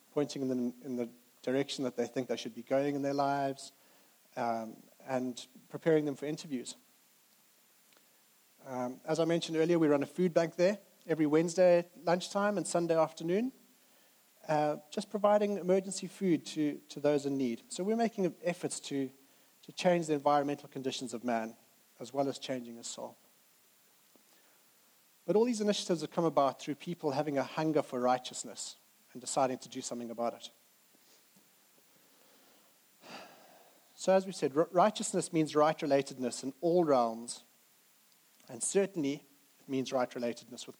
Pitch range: 130-175 Hz